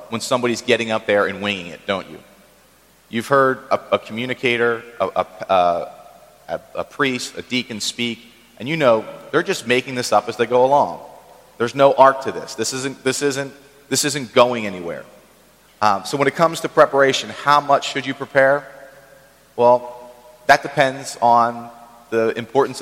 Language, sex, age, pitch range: English, male, 30-49, 110-135 Hz